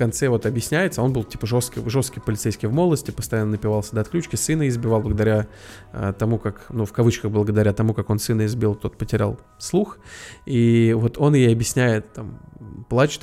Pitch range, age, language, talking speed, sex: 110-130 Hz, 20-39, Russian, 175 wpm, male